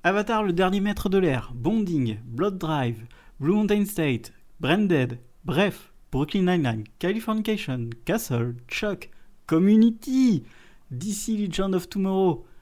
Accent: French